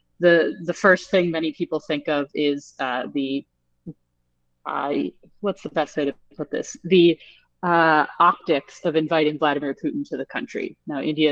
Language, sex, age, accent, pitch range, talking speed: English, female, 30-49, American, 145-170 Hz, 165 wpm